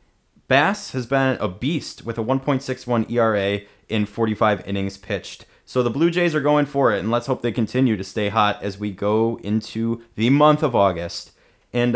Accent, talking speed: American, 190 wpm